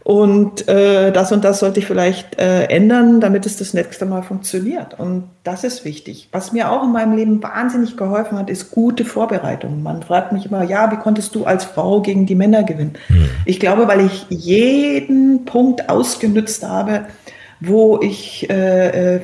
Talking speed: 180 wpm